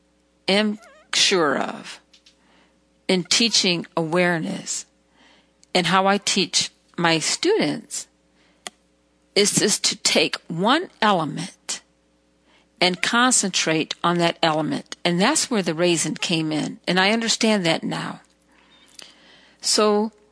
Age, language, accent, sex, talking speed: 50-69, English, American, female, 105 wpm